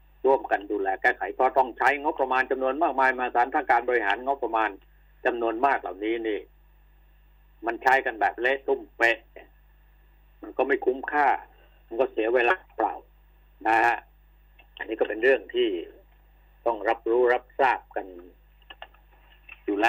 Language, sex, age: Thai, male, 60-79